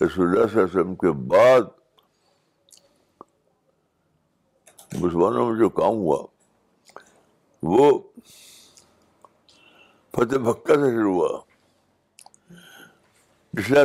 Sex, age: male, 60-79